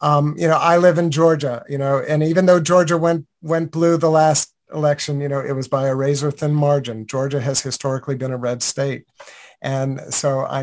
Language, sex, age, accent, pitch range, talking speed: English, male, 50-69, American, 140-160 Hz, 215 wpm